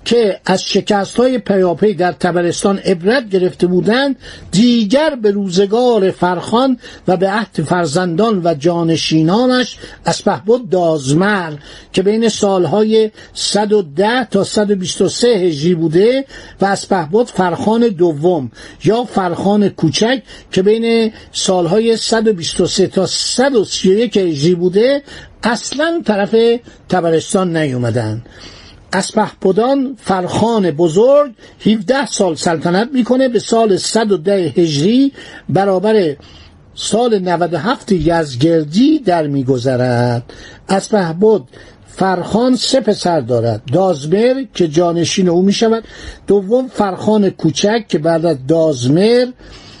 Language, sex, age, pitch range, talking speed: Persian, male, 60-79, 170-225 Hz, 100 wpm